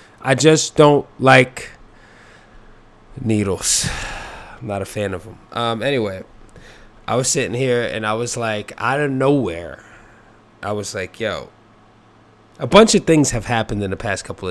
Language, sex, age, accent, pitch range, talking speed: English, male, 20-39, American, 95-115 Hz, 155 wpm